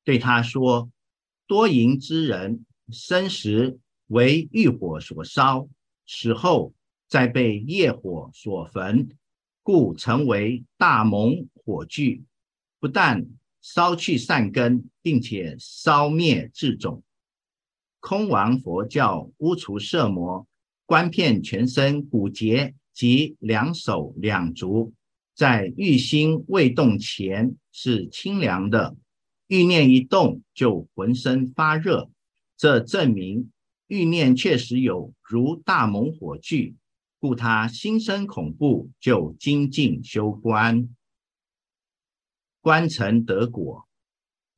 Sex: male